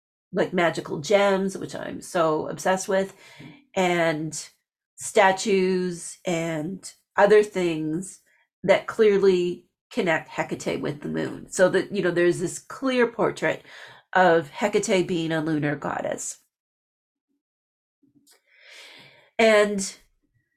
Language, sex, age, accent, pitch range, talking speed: English, female, 40-59, American, 170-205 Hz, 100 wpm